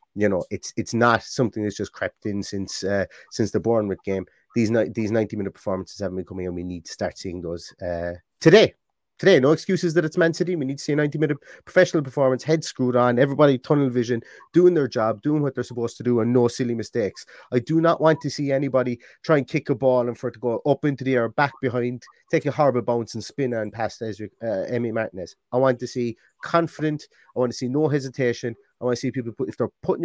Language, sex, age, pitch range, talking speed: English, male, 30-49, 120-155 Hz, 245 wpm